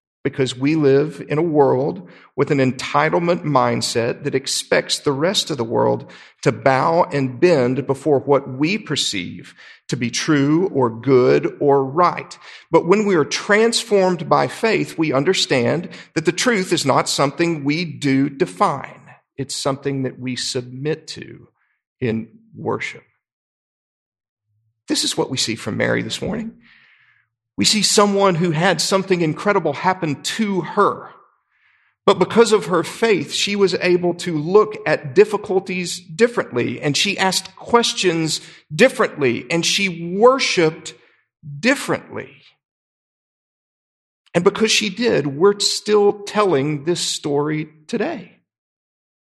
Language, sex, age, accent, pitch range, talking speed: English, male, 40-59, American, 140-205 Hz, 135 wpm